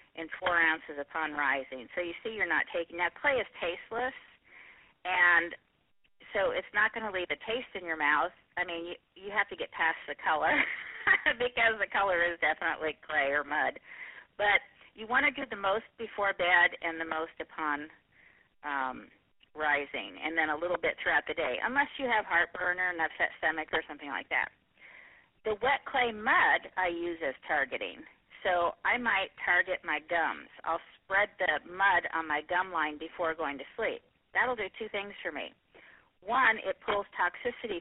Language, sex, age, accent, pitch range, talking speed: English, female, 40-59, American, 165-220 Hz, 180 wpm